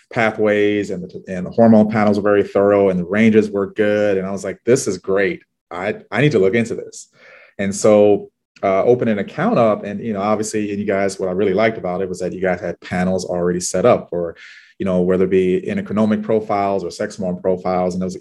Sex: male